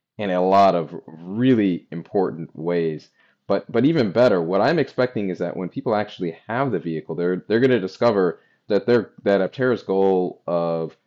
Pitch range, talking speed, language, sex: 85-100 Hz, 180 wpm, English, male